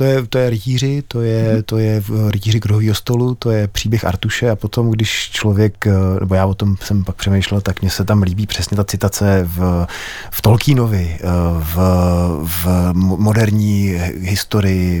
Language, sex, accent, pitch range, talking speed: Czech, male, native, 90-125 Hz, 170 wpm